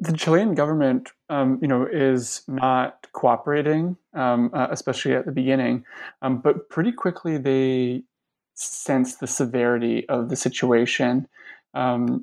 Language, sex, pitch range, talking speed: English, male, 120-135 Hz, 135 wpm